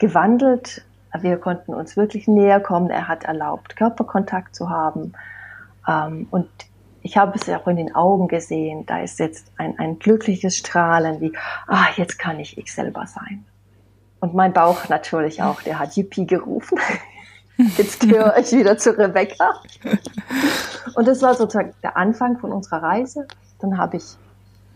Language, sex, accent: German, female, German